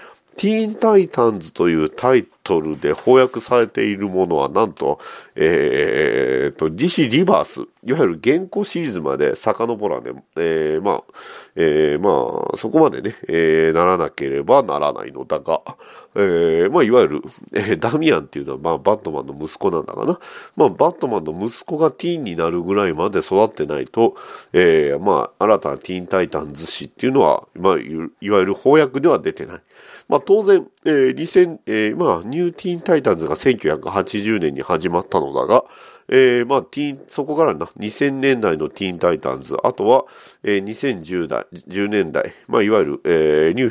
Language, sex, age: Japanese, male, 40-59